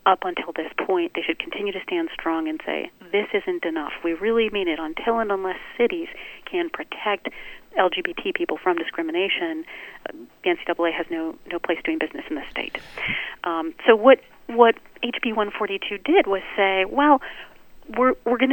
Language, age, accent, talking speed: English, 40-59, American, 170 wpm